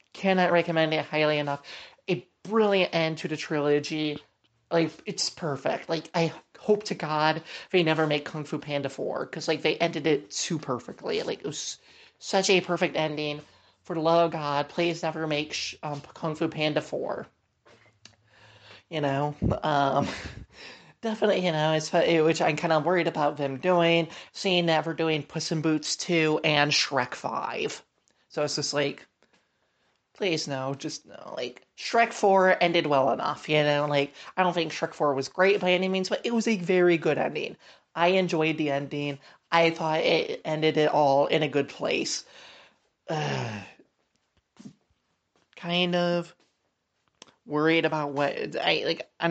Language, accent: English, American